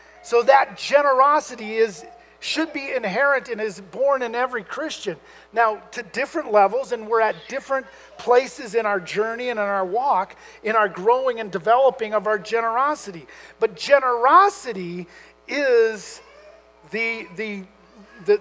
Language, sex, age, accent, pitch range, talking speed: English, male, 50-69, American, 205-290 Hz, 140 wpm